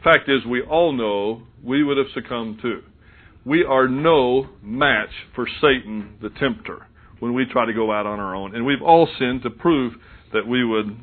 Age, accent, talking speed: 50-69, American, 195 wpm